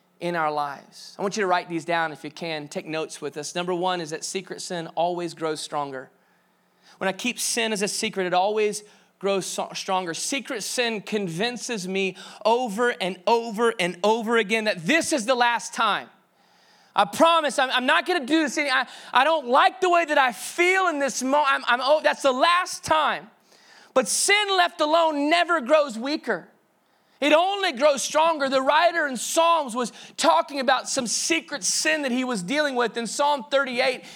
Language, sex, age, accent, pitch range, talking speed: English, male, 30-49, American, 190-285 Hz, 190 wpm